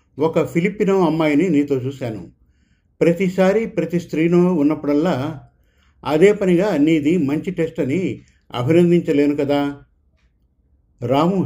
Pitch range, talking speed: 135-170 Hz, 95 wpm